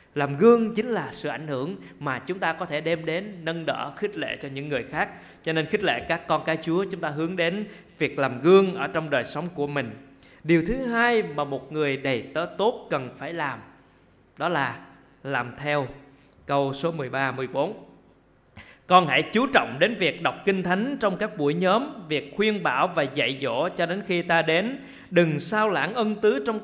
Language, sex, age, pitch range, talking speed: Vietnamese, male, 20-39, 150-215 Hz, 210 wpm